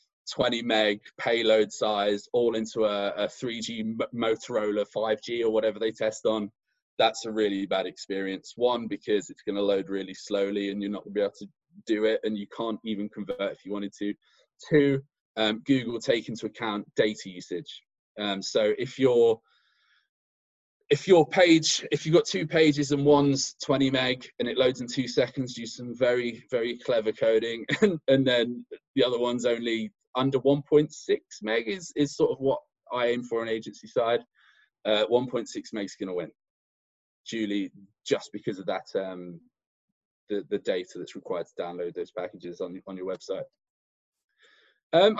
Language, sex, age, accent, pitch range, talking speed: English, male, 20-39, British, 110-160 Hz, 175 wpm